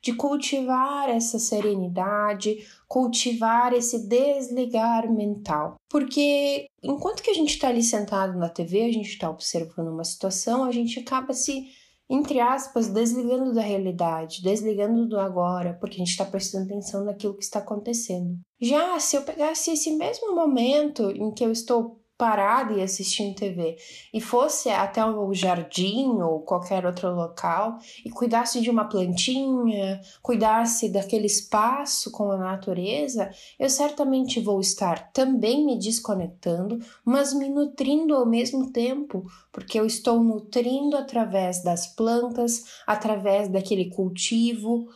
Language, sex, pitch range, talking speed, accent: Portuguese, female, 195-255 Hz, 140 wpm, Brazilian